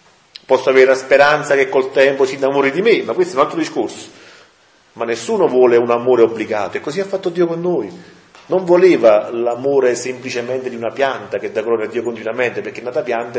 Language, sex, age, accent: Italian, male, 40-59, native